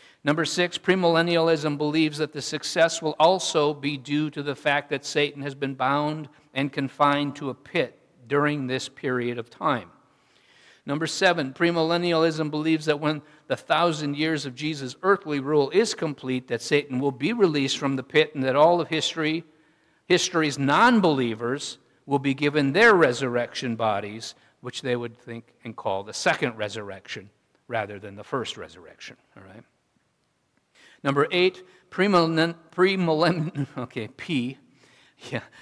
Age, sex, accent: 50-69, male, American